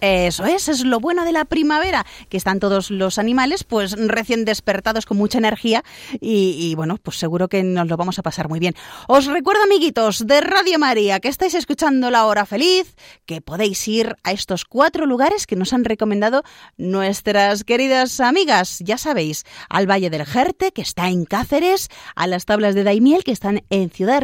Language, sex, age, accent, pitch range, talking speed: Spanish, female, 30-49, Spanish, 185-260 Hz, 190 wpm